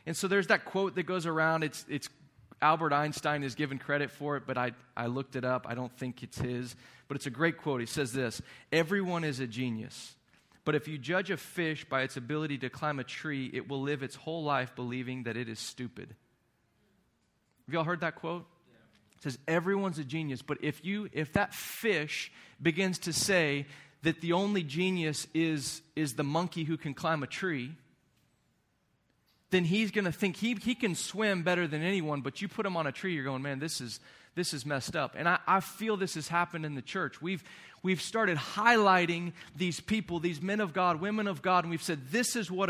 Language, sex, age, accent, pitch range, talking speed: English, male, 30-49, American, 135-185 Hz, 215 wpm